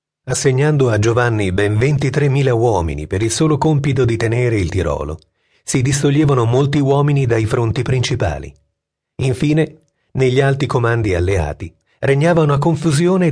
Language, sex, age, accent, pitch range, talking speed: Italian, male, 40-59, native, 100-145 Hz, 130 wpm